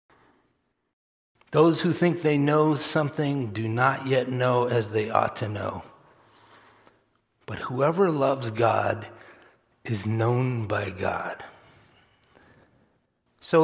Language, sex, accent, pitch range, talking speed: English, male, American, 125-155 Hz, 105 wpm